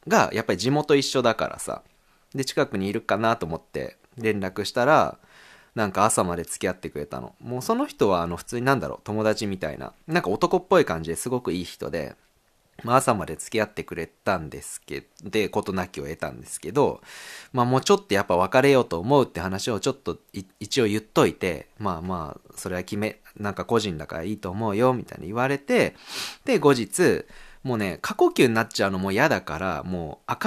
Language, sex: Japanese, male